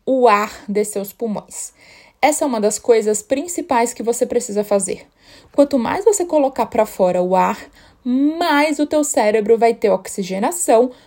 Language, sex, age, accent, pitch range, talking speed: Portuguese, female, 20-39, Brazilian, 210-275 Hz, 165 wpm